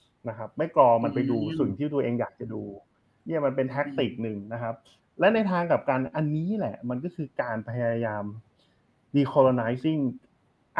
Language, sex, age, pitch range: Thai, male, 20-39, 110-140 Hz